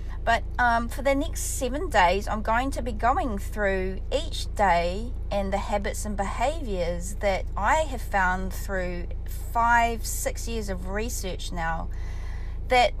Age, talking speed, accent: 30-49, 150 wpm, Australian